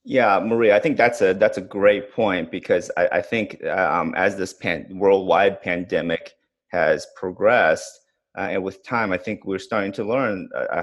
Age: 30-49